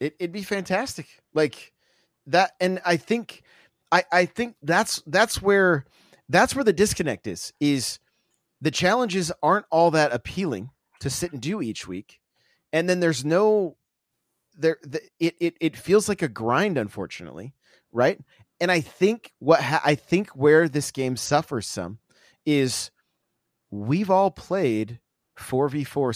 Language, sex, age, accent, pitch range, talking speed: English, male, 30-49, American, 120-175 Hz, 150 wpm